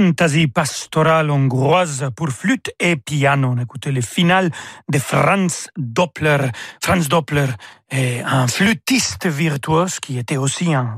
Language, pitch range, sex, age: French, 140-175 Hz, male, 40-59